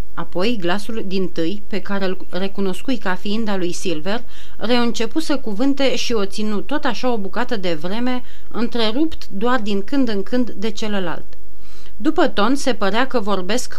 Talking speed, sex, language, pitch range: 165 wpm, female, Romanian, 185-245 Hz